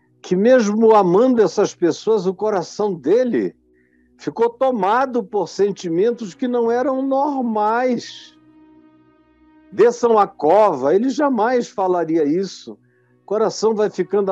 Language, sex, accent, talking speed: Portuguese, male, Brazilian, 115 wpm